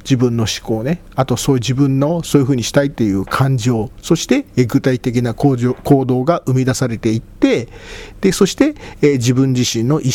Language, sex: Japanese, male